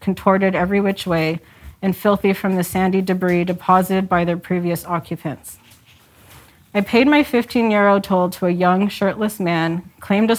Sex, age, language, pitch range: female, 30-49, English, 175-200 Hz